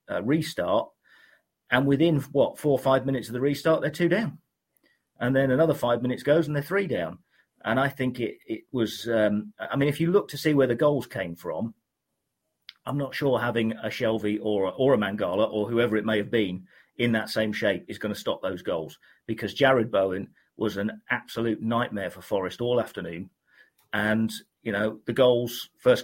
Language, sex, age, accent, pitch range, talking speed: English, male, 40-59, British, 105-130 Hz, 205 wpm